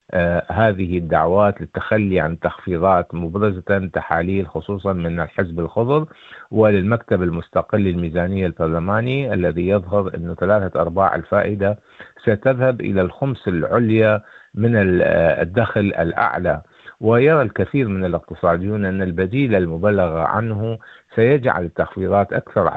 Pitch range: 90-110 Hz